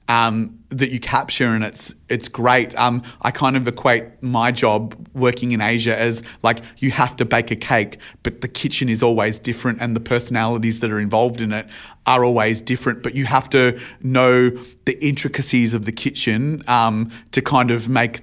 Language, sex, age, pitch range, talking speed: English, male, 30-49, 115-130 Hz, 190 wpm